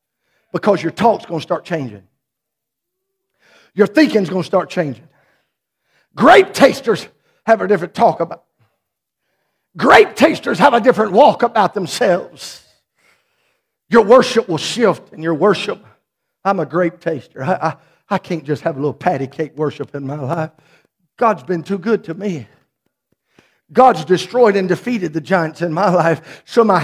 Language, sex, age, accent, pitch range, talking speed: English, male, 50-69, American, 165-250 Hz, 160 wpm